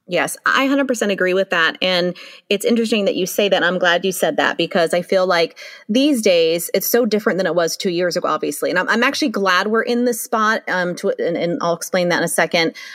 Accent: American